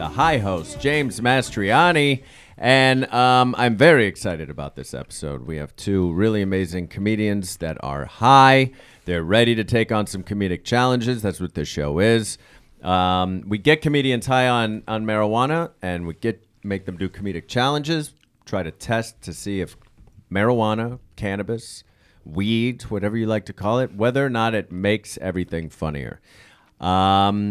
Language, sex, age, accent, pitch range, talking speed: English, male, 30-49, American, 95-120 Hz, 160 wpm